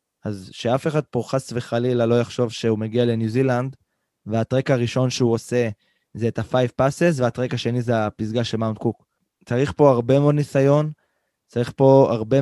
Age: 20-39